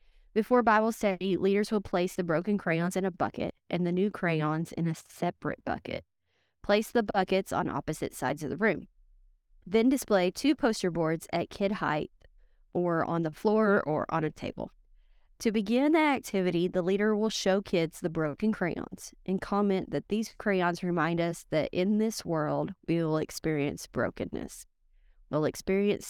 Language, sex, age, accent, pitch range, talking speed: English, female, 30-49, American, 165-210 Hz, 170 wpm